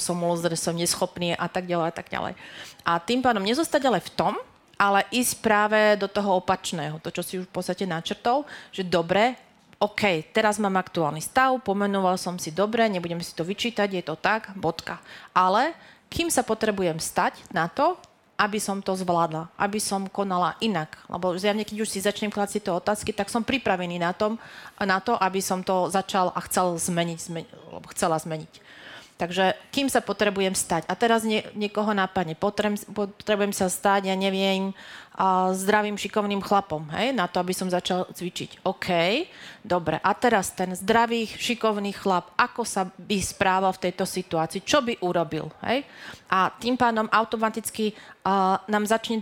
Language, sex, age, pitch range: Slovak, female, 30-49, 180-215 Hz